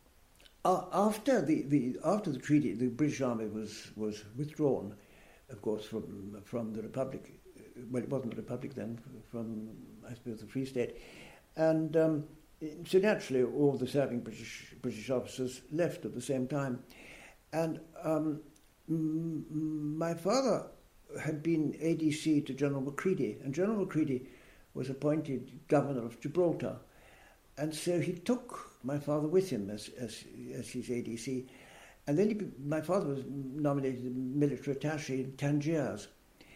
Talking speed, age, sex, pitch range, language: 145 wpm, 60-79, male, 115-155 Hz, English